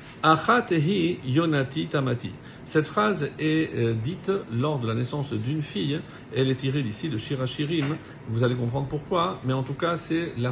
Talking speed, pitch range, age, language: 165 wpm, 125-160 Hz, 50-69, French